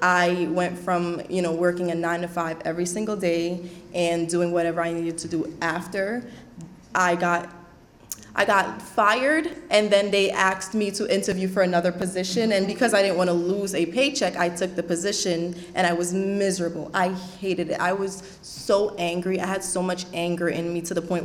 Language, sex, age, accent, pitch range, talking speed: English, female, 20-39, American, 175-200 Hz, 200 wpm